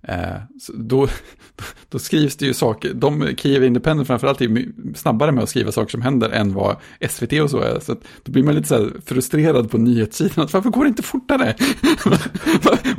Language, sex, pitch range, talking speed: Swedish, male, 115-155 Hz, 190 wpm